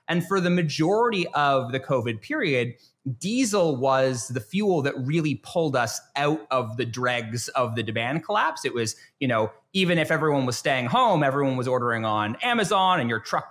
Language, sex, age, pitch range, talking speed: English, male, 30-49, 130-175 Hz, 185 wpm